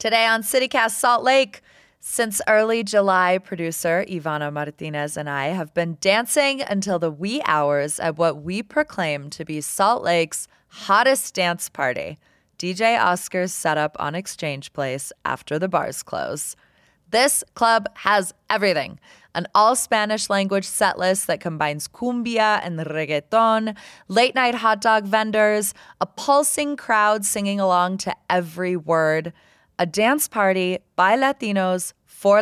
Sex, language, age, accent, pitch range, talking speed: female, English, 20-39, American, 165-230 Hz, 140 wpm